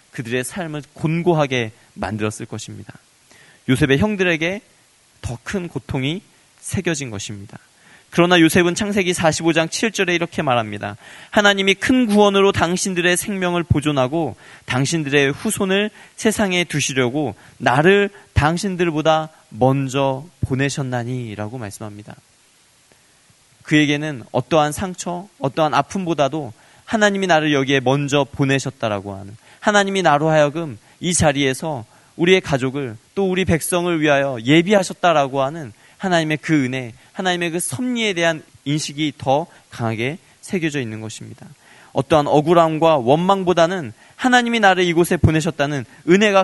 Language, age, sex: Korean, 20-39, male